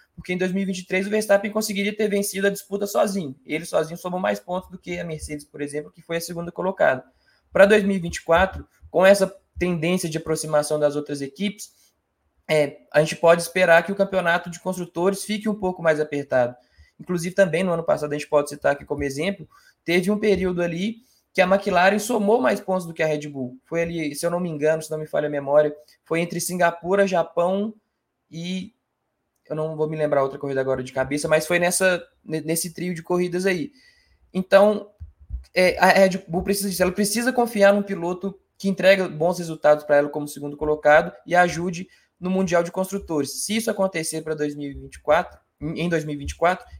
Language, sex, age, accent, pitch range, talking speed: Portuguese, male, 20-39, Brazilian, 155-195 Hz, 190 wpm